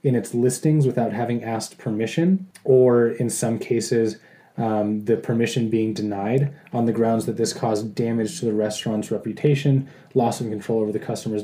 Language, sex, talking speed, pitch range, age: English, male, 175 wpm, 110-140 Hz, 20-39